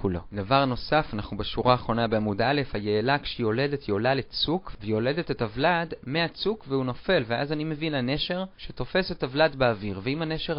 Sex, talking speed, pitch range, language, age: male, 155 wpm, 110-150 Hz, Hebrew, 30-49